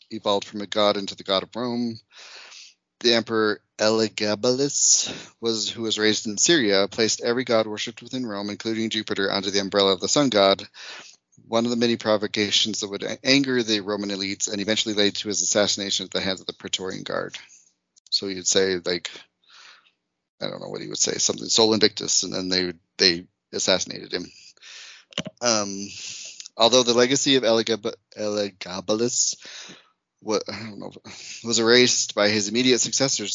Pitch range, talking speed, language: 100-120 Hz, 170 wpm, English